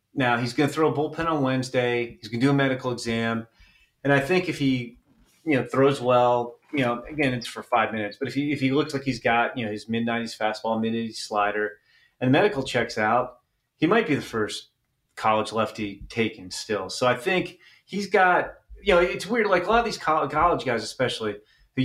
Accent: American